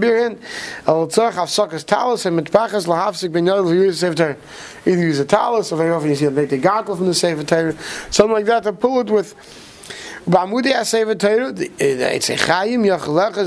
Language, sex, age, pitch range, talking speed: English, male, 30-49, 150-200 Hz, 60 wpm